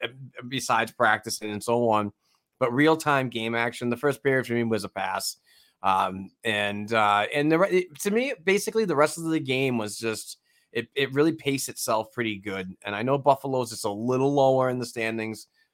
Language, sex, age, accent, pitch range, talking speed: English, male, 20-39, American, 100-130 Hz, 200 wpm